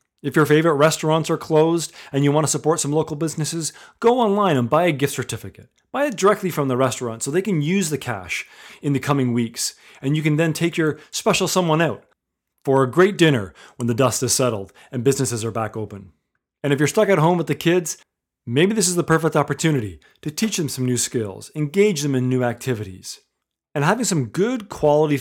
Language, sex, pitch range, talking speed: English, male, 120-170 Hz, 215 wpm